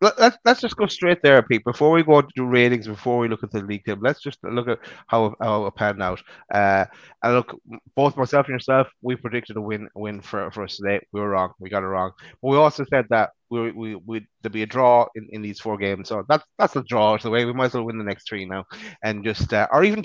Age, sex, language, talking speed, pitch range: 30-49, male, English, 270 wpm, 105-130 Hz